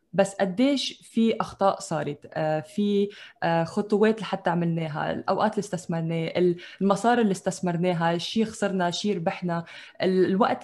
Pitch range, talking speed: 180-220 Hz, 115 wpm